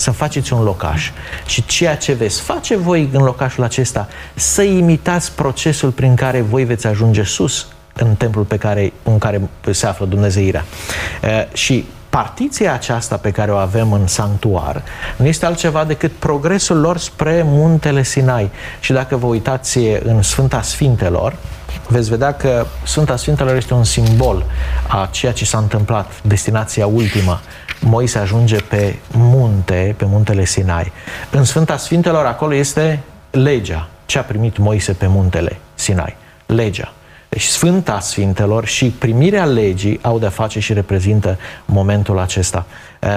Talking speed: 145 wpm